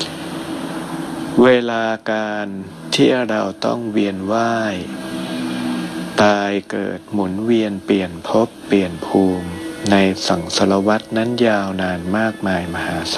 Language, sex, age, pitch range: Thai, male, 60-79, 95-110 Hz